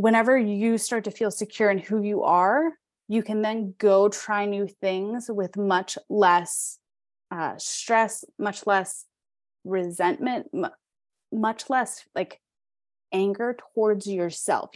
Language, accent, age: English, American, 20-39